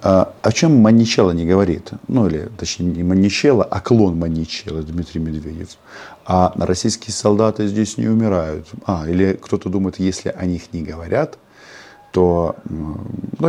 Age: 40-59